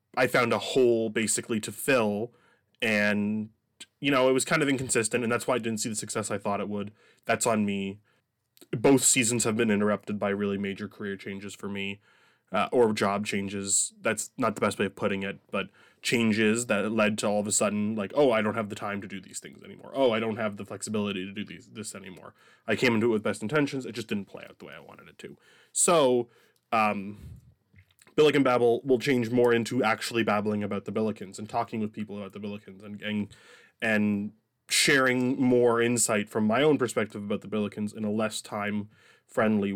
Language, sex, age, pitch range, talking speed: English, male, 20-39, 100-115 Hz, 210 wpm